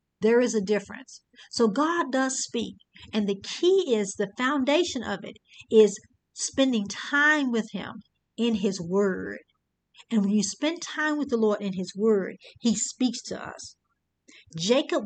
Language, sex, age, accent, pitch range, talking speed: English, female, 50-69, American, 205-275 Hz, 160 wpm